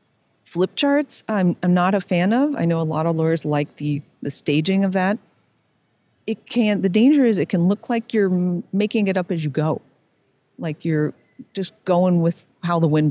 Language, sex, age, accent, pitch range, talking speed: English, female, 40-59, American, 160-215 Hz, 200 wpm